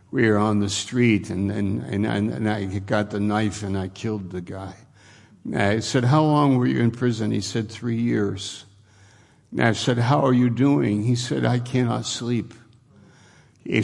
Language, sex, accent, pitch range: English, male, American, 100-115 Hz